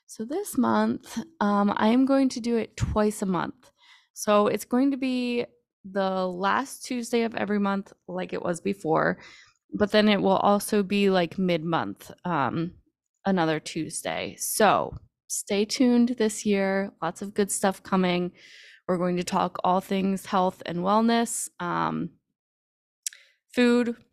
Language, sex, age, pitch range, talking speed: English, female, 20-39, 195-240 Hz, 150 wpm